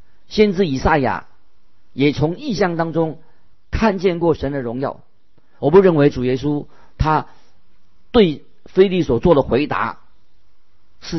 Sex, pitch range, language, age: male, 135-175 Hz, Chinese, 50-69